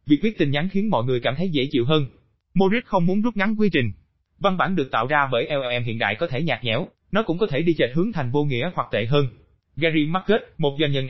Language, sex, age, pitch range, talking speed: Vietnamese, male, 20-39, 125-180 Hz, 270 wpm